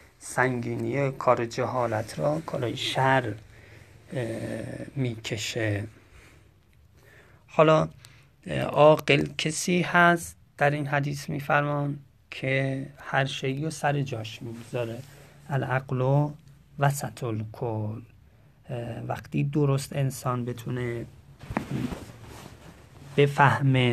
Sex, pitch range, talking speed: male, 120-145 Hz, 75 wpm